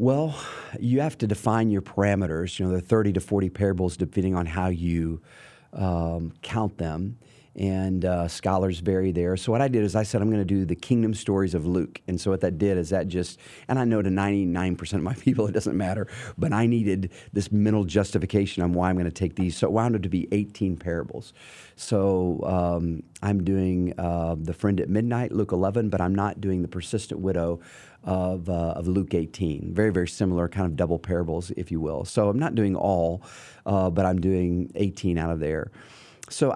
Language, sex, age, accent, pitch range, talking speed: English, male, 40-59, American, 90-105 Hz, 210 wpm